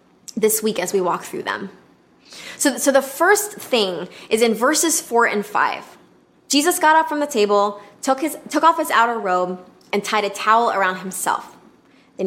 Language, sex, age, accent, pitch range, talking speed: English, female, 20-39, American, 190-235 Hz, 180 wpm